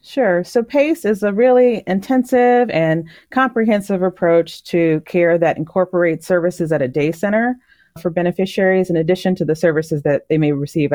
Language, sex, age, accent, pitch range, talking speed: English, female, 30-49, American, 155-215 Hz, 165 wpm